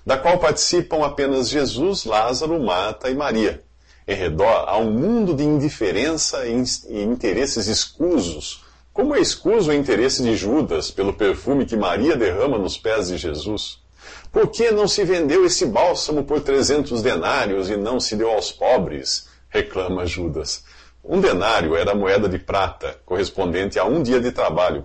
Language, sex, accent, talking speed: English, male, Brazilian, 155 wpm